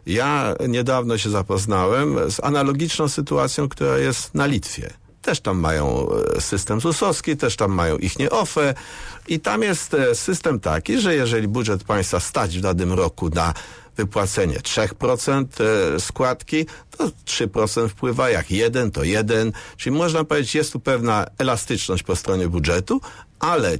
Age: 50-69